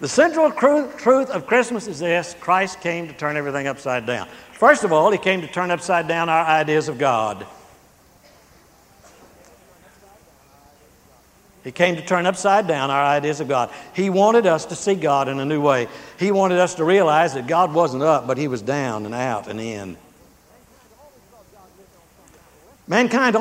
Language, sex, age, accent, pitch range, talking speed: English, male, 60-79, American, 125-180 Hz, 165 wpm